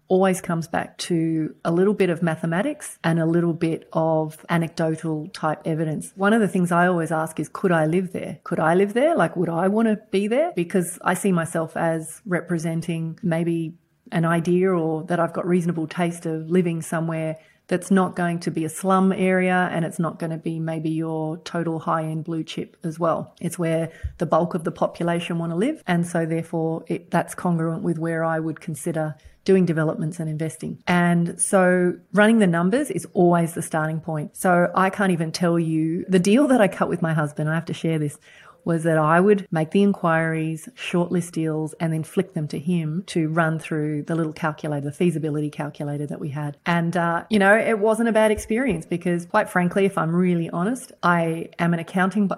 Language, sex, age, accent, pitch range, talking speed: English, female, 30-49, Australian, 160-185 Hz, 205 wpm